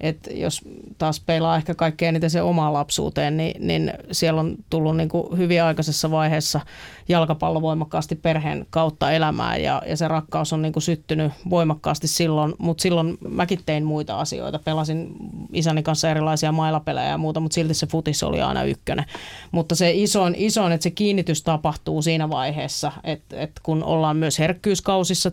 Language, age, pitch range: Finnish, 30-49, 155-165 Hz